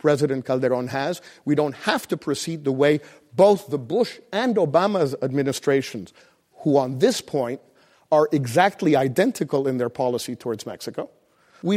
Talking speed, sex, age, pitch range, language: 150 wpm, male, 50-69, 140-175 Hz, English